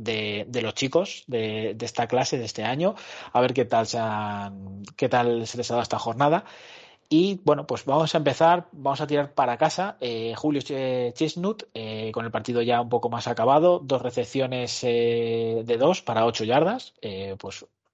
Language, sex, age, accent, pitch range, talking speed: Spanish, male, 30-49, Spanish, 115-140 Hz, 195 wpm